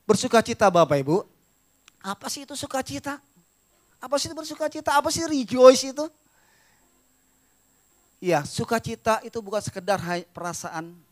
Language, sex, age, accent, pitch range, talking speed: Indonesian, male, 30-49, native, 175-275 Hz, 110 wpm